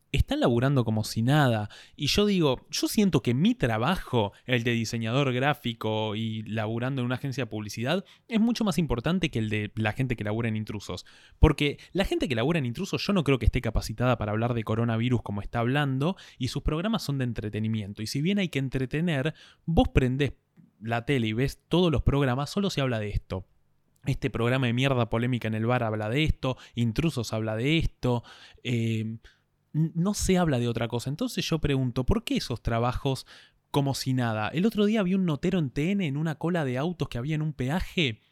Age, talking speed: 20-39, 210 wpm